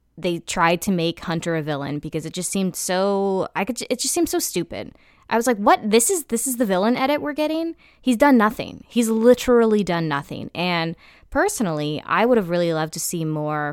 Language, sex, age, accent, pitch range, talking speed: English, female, 20-39, American, 155-225 Hz, 215 wpm